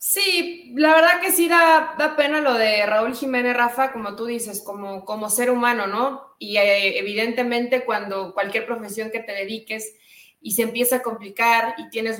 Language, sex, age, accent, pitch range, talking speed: Spanish, female, 20-39, Mexican, 210-260 Hz, 175 wpm